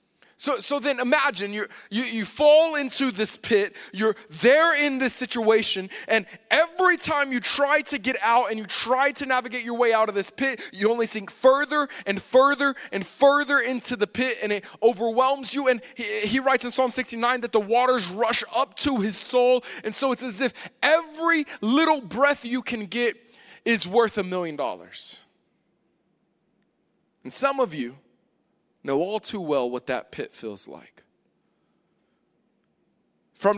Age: 20-39